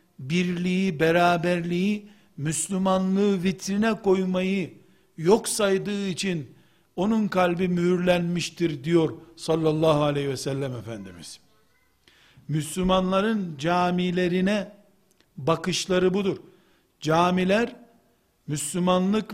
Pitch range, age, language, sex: 175-205 Hz, 60-79, Turkish, male